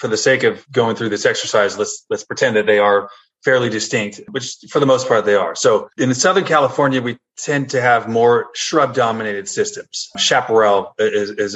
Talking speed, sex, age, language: 190 wpm, male, 20-39, English